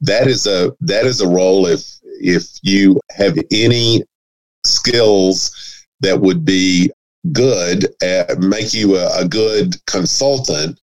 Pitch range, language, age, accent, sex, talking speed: 95-125 Hz, English, 50-69, American, male, 135 wpm